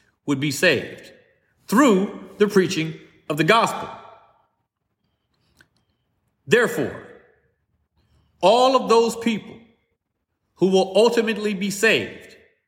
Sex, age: male, 40-59